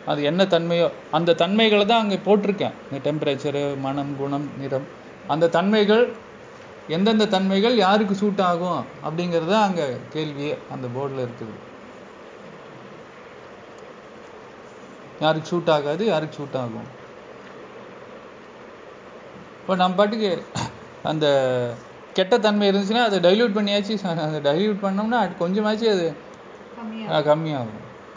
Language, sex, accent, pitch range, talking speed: Tamil, male, native, 160-215 Hz, 105 wpm